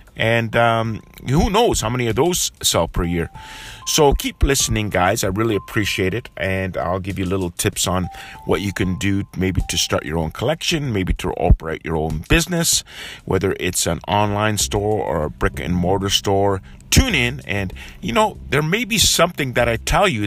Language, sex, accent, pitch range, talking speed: English, male, American, 90-120 Hz, 195 wpm